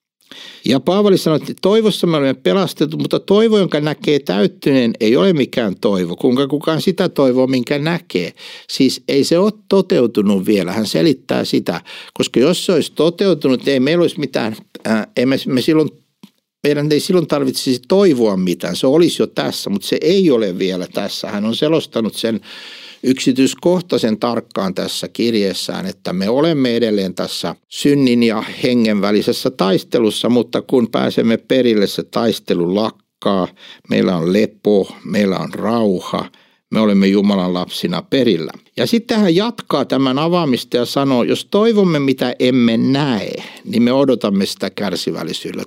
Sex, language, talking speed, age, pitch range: male, Finnish, 150 wpm, 60-79, 110-165 Hz